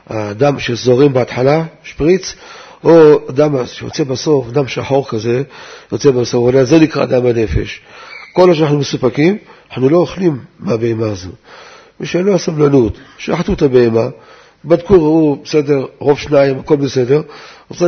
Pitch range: 130-165 Hz